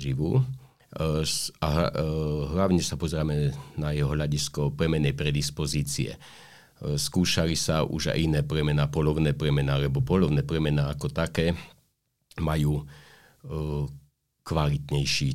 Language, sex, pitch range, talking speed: Slovak, male, 75-90 Hz, 100 wpm